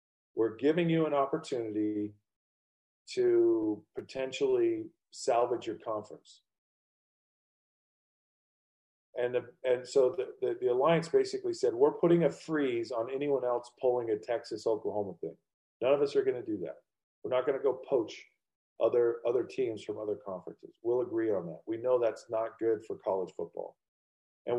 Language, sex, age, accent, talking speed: English, male, 40-59, American, 160 wpm